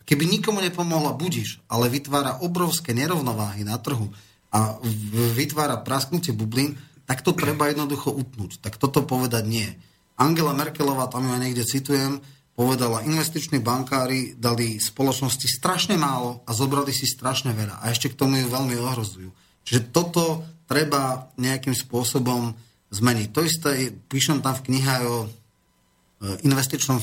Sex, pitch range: male, 120-145 Hz